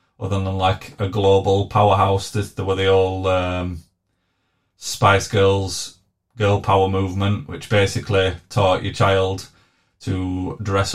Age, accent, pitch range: 20-39, British, 95-115 Hz